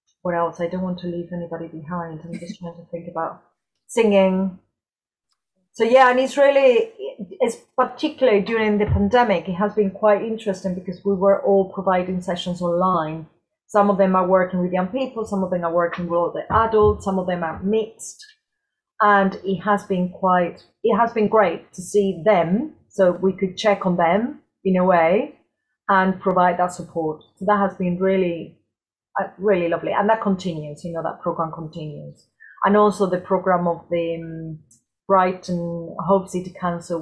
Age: 30-49